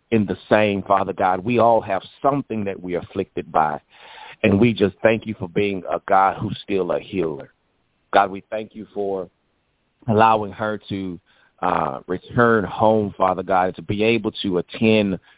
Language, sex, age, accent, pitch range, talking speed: English, male, 30-49, American, 95-110 Hz, 170 wpm